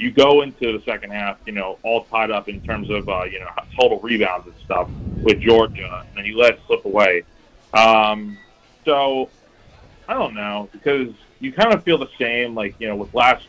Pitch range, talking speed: 105-125 Hz, 210 wpm